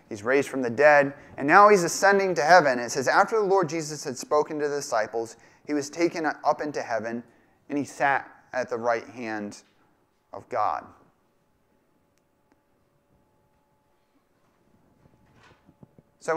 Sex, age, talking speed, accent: male, 30-49, 140 wpm, American